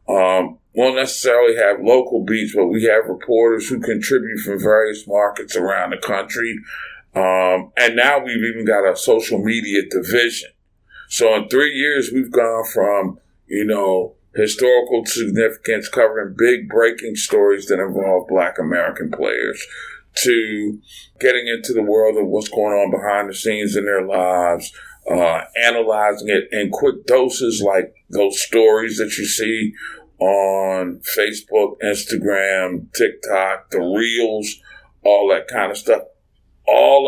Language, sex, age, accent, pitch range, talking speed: English, male, 50-69, American, 100-135 Hz, 140 wpm